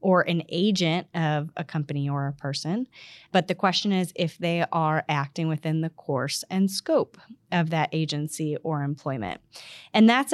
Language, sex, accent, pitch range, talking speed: English, female, American, 155-190 Hz, 170 wpm